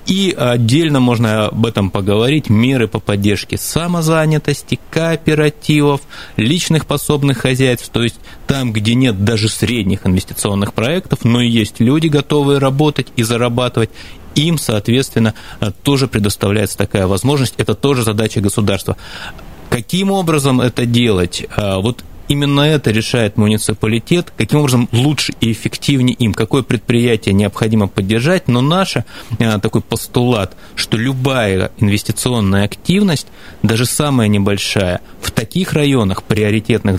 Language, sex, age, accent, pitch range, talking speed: Russian, male, 30-49, native, 105-135 Hz, 120 wpm